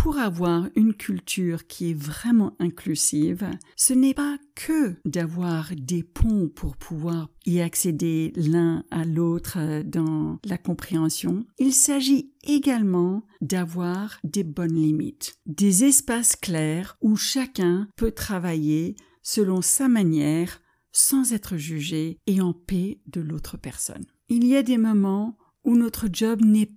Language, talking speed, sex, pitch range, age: French, 135 wpm, female, 170-230 Hz, 60-79